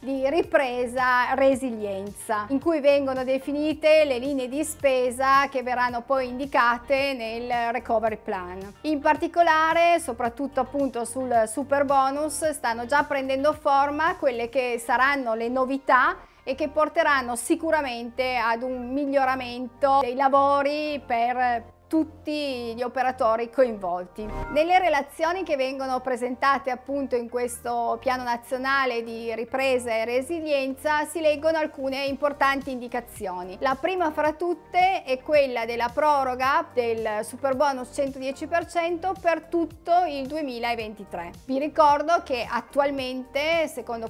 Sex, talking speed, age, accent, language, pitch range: female, 120 wpm, 40-59, native, Italian, 240-295 Hz